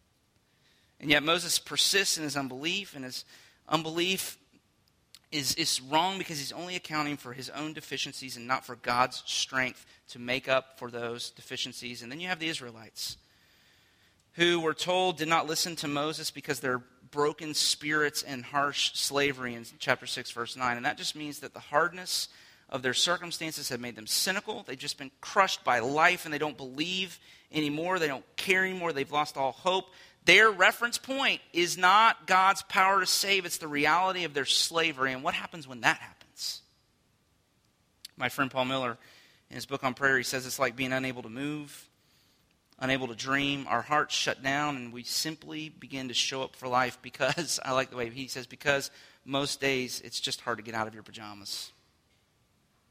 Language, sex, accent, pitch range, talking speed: English, male, American, 130-165 Hz, 185 wpm